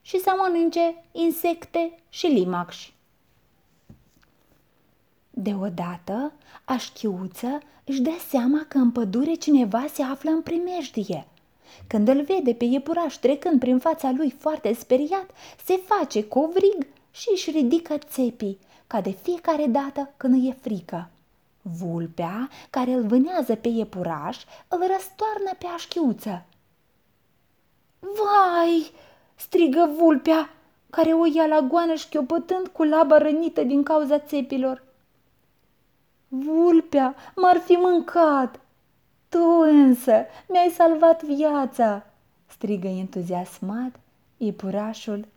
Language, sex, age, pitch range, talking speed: Romanian, female, 20-39, 220-330 Hz, 110 wpm